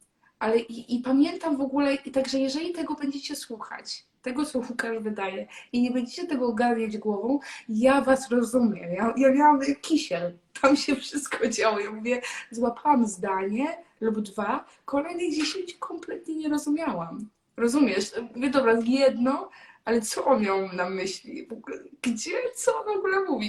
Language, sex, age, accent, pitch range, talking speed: Polish, female, 20-39, native, 220-285 Hz, 155 wpm